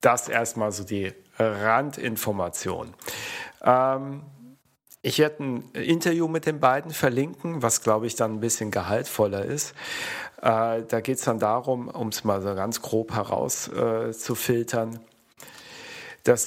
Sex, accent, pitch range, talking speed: male, German, 115-135 Hz, 135 wpm